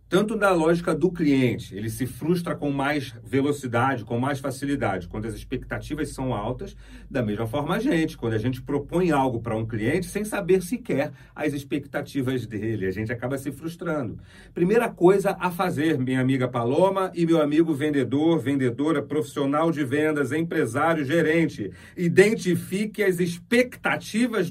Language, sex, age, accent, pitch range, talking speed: Portuguese, male, 40-59, Brazilian, 125-180 Hz, 155 wpm